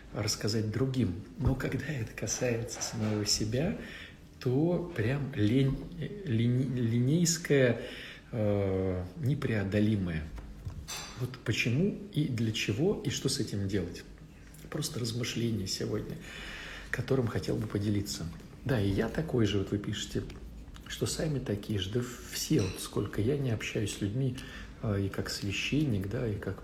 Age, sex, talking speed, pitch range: 50-69, male, 130 wpm, 105-135 Hz